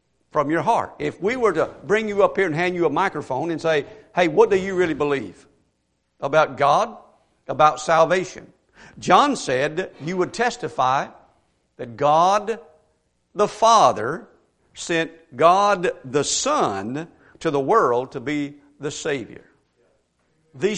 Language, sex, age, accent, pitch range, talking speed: English, male, 50-69, American, 150-205 Hz, 140 wpm